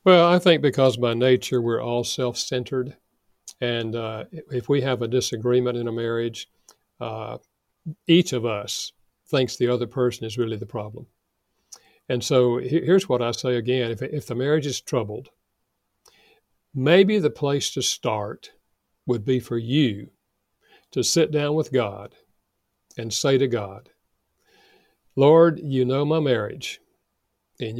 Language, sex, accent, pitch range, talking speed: English, male, American, 120-155 Hz, 145 wpm